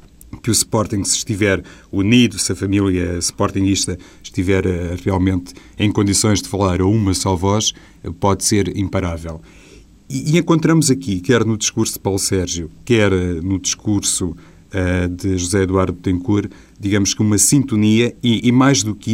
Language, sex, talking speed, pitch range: Portuguese, male, 155 wpm, 95-115 Hz